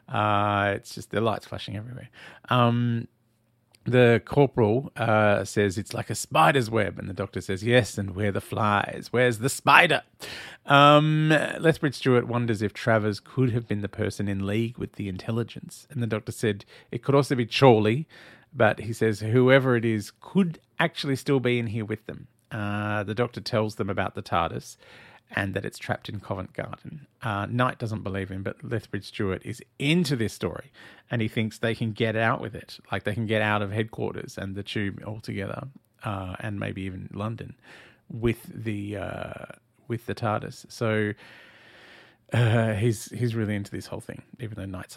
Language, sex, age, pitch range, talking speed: English, male, 40-59, 105-120 Hz, 185 wpm